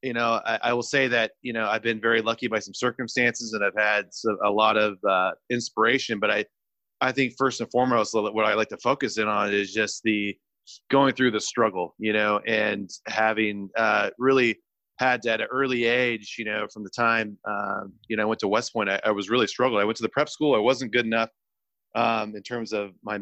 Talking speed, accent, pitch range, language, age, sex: 235 wpm, American, 110-130 Hz, English, 30-49, male